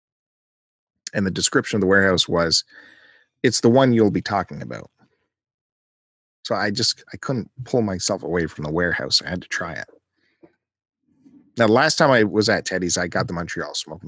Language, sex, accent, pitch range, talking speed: English, male, American, 100-130 Hz, 180 wpm